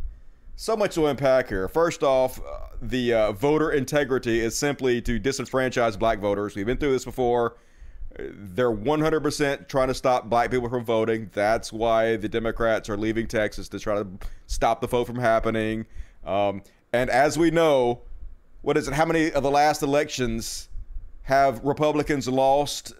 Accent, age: American, 30-49